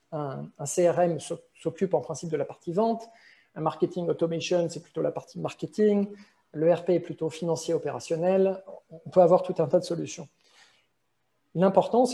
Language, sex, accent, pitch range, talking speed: French, male, French, 160-190 Hz, 165 wpm